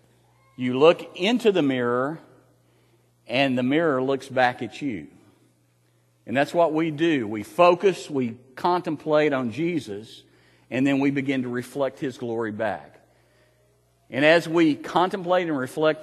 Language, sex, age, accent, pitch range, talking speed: English, male, 50-69, American, 115-150 Hz, 140 wpm